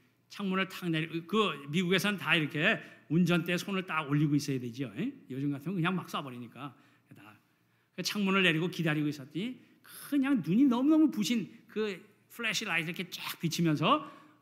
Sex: male